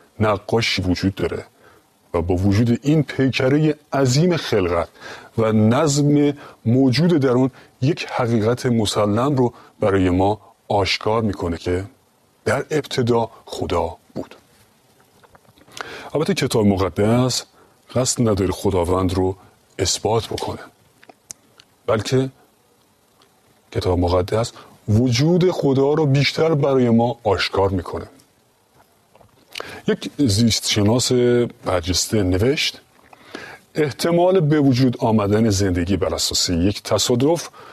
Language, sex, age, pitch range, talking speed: Persian, male, 30-49, 105-135 Hz, 95 wpm